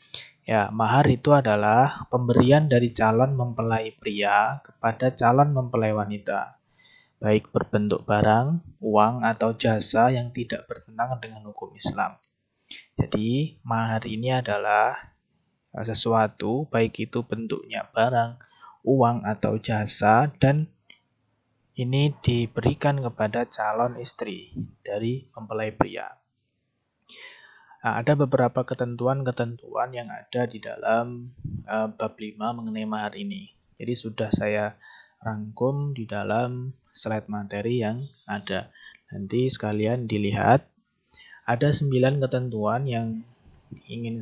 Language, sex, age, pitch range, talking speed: Indonesian, male, 20-39, 110-125 Hz, 105 wpm